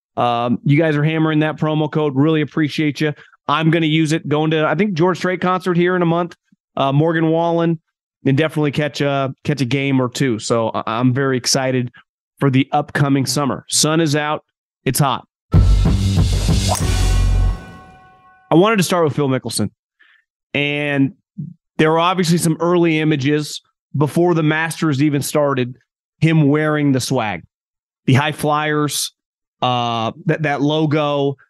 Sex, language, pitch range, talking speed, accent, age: male, English, 135-165 Hz, 155 wpm, American, 30-49